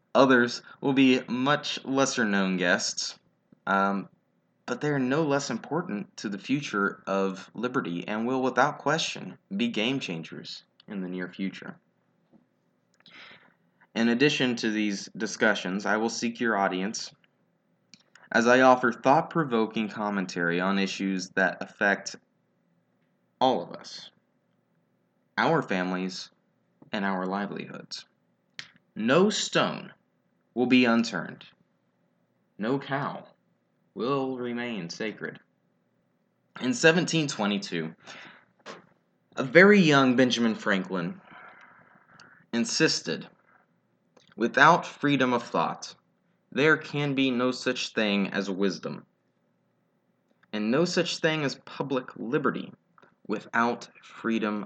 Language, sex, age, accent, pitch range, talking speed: English, male, 20-39, American, 100-140 Hz, 105 wpm